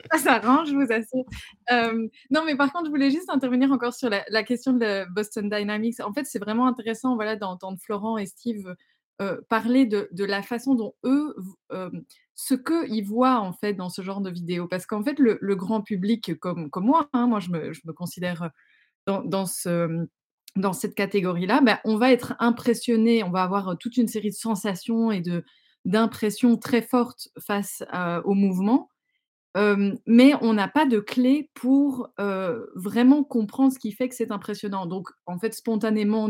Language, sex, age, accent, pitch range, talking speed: French, female, 20-39, French, 190-245 Hz, 195 wpm